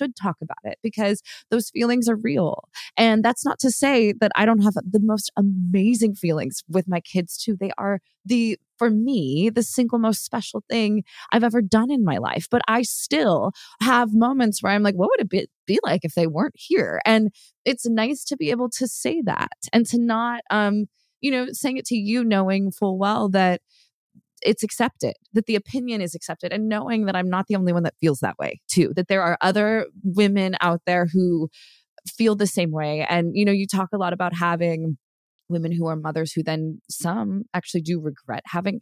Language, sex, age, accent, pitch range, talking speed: English, female, 20-39, American, 165-220 Hz, 205 wpm